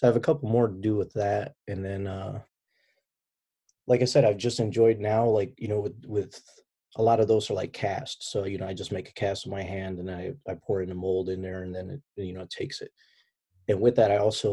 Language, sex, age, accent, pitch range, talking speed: English, male, 30-49, American, 95-115 Hz, 270 wpm